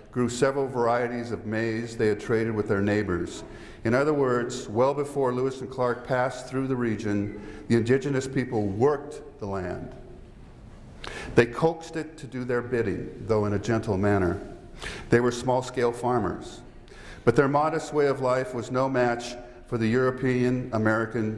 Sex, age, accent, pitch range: male, 50-69, American, 110-130 Hz